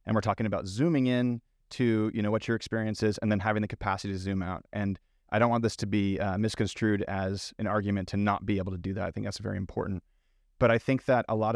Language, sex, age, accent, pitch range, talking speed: English, male, 30-49, American, 100-120 Hz, 265 wpm